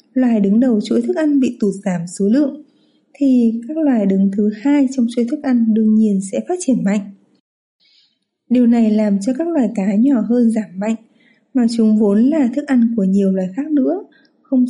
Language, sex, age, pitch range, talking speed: Vietnamese, female, 20-39, 210-260 Hz, 205 wpm